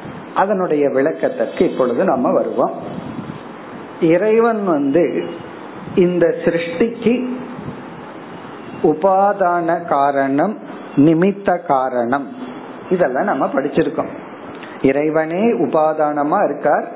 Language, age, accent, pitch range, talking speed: Tamil, 50-69, native, 155-220 Hz, 35 wpm